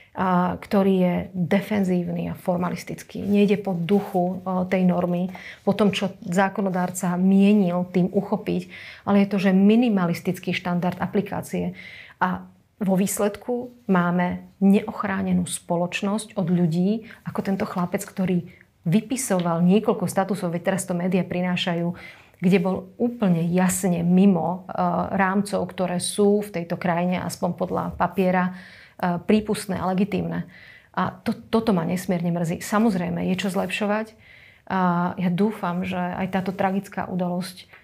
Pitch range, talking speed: 180-200 Hz, 130 wpm